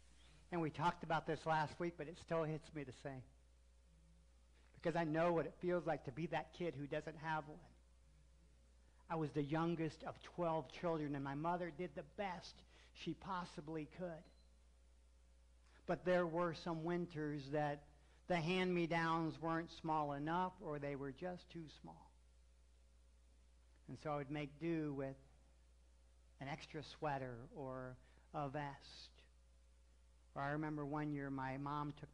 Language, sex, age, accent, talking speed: English, male, 50-69, American, 155 wpm